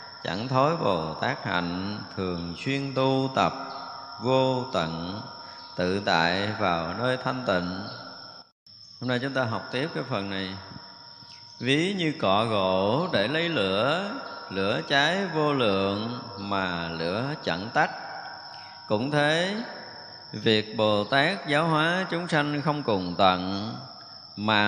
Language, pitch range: Vietnamese, 100-150 Hz